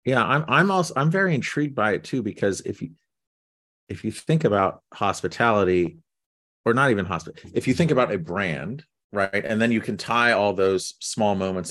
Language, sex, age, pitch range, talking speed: English, male, 30-49, 90-120 Hz, 195 wpm